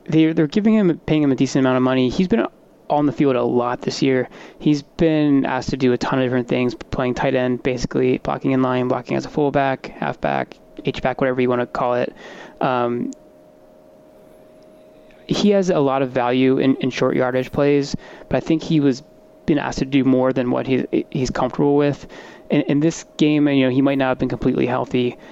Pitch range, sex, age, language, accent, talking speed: 125-145 Hz, male, 20-39, English, American, 215 wpm